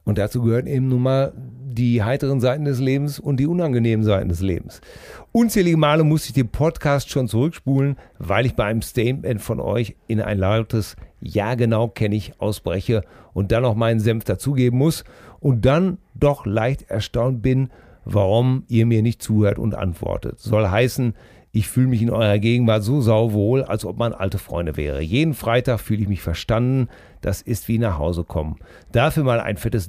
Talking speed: 185 wpm